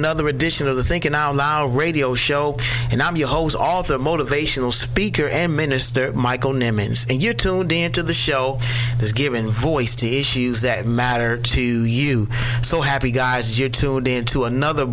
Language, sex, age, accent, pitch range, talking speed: English, male, 30-49, American, 120-140 Hz, 180 wpm